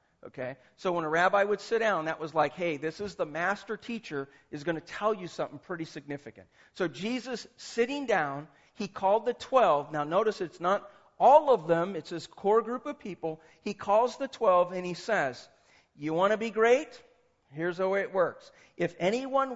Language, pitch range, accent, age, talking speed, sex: English, 150-210 Hz, American, 40-59, 195 wpm, male